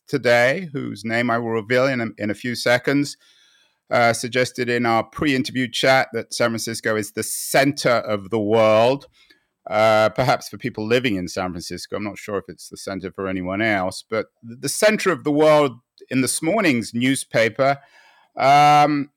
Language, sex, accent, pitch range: English, male, British, 115-150 Hz